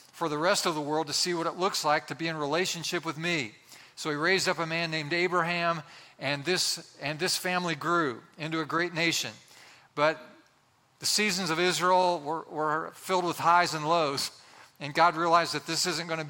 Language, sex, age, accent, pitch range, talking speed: English, male, 50-69, American, 150-180 Hz, 205 wpm